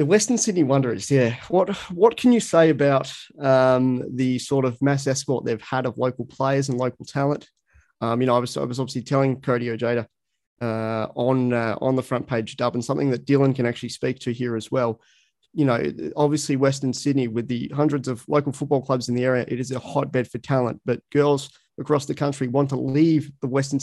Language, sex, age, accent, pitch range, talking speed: English, male, 30-49, Australian, 125-145 Hz, 215 wpm